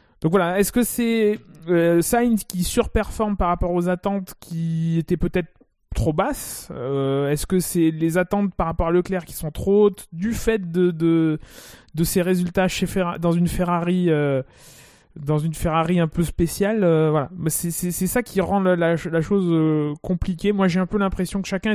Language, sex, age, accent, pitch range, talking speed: French, male, 20-39, French, 160-195 Hz, 200 wpm